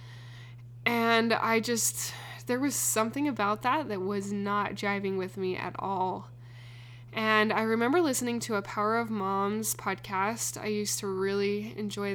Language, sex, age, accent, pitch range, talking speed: English, female, 10-29, American, 195-225 Hz, 155 wpm